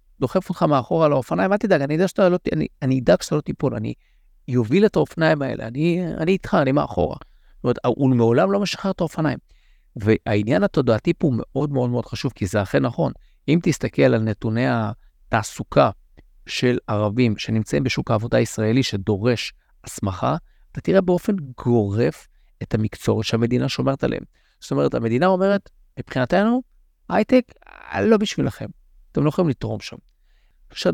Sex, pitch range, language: male, 110-150 Hz, Hebrew